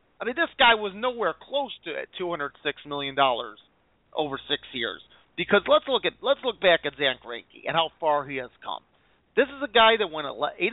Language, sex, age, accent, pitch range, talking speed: English, male, 40-59, American, 165-260 Hz, 220 wpm